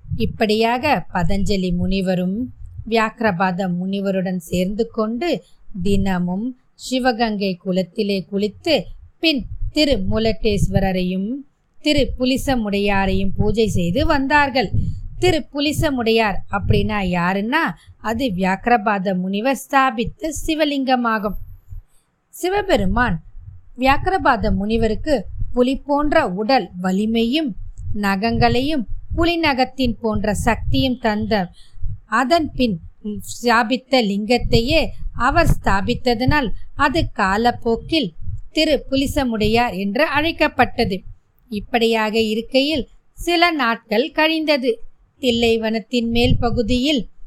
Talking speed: 55 wpm